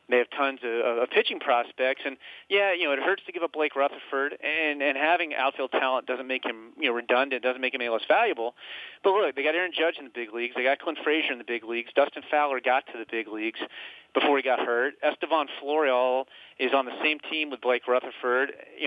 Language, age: English, 30-49